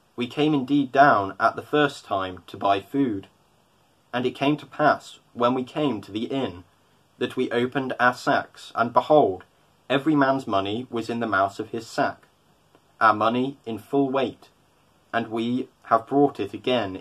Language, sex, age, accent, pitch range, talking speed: English, male, 20-39, British, 105-130 Hz, 175 wpm